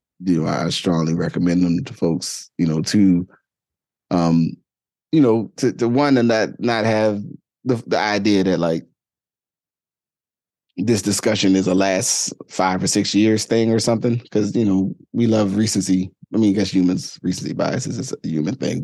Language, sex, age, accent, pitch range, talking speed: English, male, 20-39, American, 90-110 Hz, 175 wpm